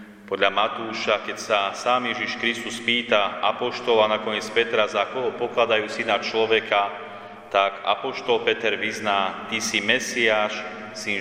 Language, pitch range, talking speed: Slovak, 105-115 Hz, 130 wpm